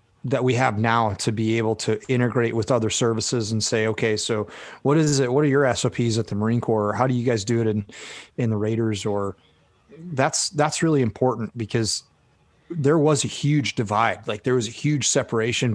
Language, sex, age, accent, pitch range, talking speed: English, male, 30-49, American, 110-130 Hz, 210 wpm